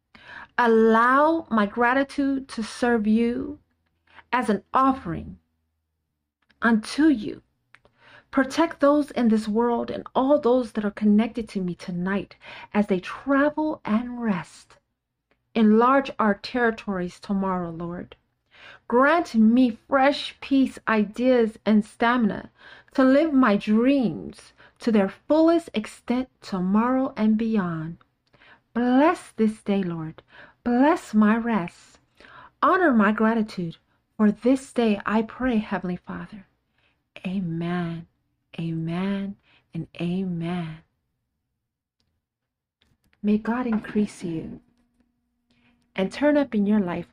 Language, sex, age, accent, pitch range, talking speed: English, female, 40-59, American, 180-245 Hz, 105 wpm